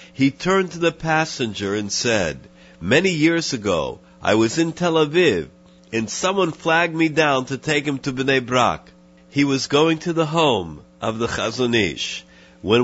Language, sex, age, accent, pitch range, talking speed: English, male, 50-69, American, 100-160 Hz, 170 wpm